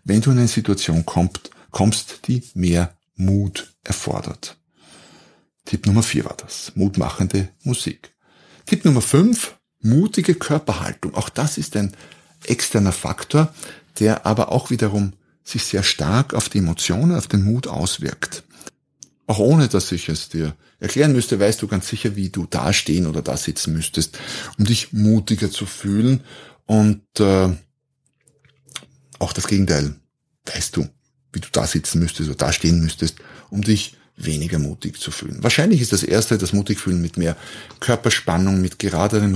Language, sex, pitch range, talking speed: German, male, 85-110 Hz, 155 wpm